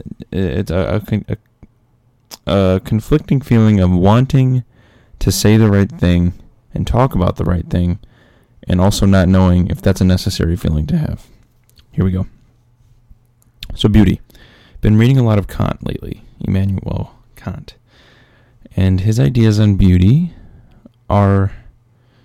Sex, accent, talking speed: male, American, 130 wpm